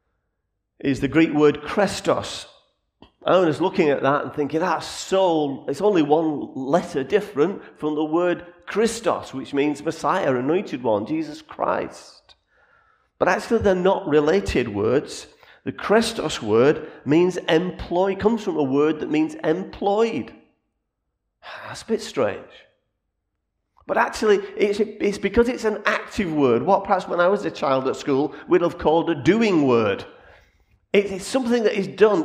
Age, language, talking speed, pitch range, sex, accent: 40-59, English, 155 wpm, 150-210 Hz, male, British